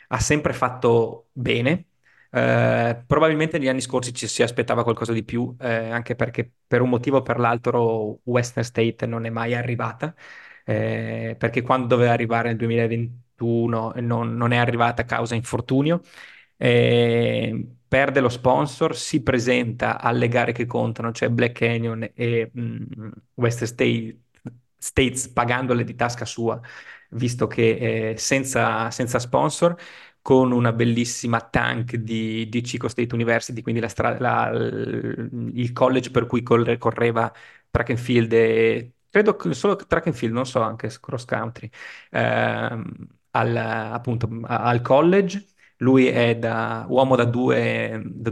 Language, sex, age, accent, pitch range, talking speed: Italian, male, 20-39, native, 115-125 Hz, 145 wpm